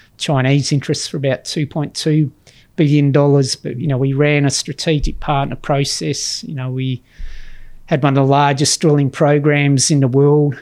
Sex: male